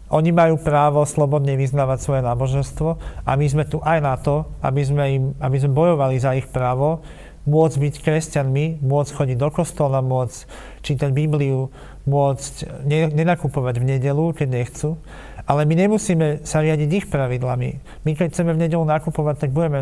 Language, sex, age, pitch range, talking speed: Slovak, male, 40-59, 135-155 Hz, 165 wpm